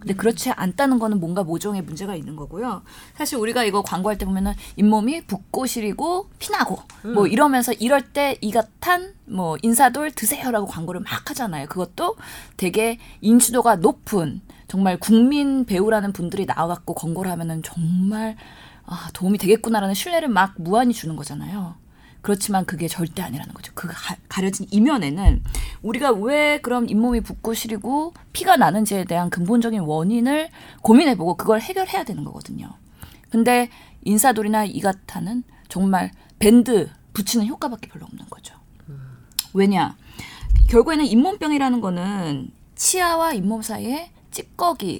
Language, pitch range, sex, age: Korean, 185-245 Hz, female, 20-39